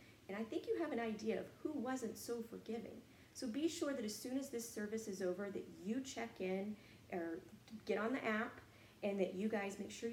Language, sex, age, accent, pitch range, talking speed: English, female, 40-59, American, 190-255 Hz, 225 wpm